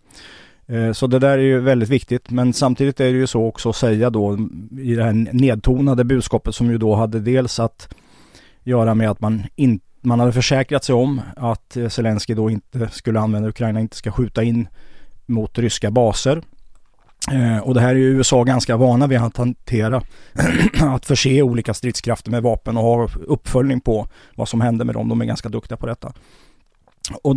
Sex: male